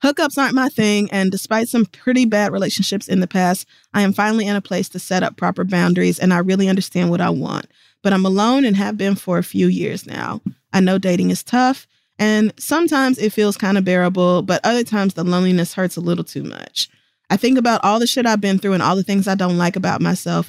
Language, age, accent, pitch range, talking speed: English, 20-39, American, 175-215 Hz, 240 wpm